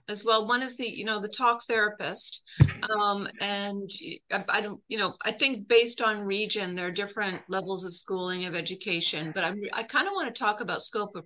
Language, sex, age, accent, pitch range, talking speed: English, female, 40-59, American, 195-235 Hz, 220 wpm